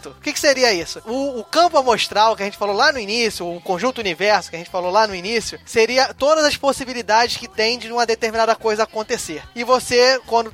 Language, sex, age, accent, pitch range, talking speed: Portuguese, male, 20-39, Brazilian, 200-245 Hz, 215 wpm